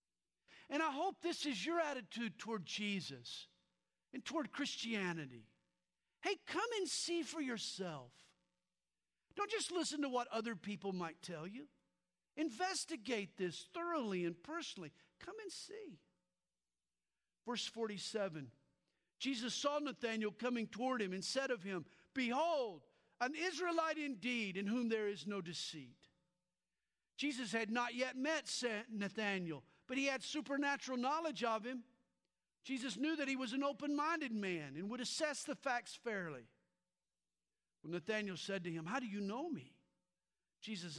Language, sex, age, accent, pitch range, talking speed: English, male, 50-69, American, 170-265 Hz, 140 wpm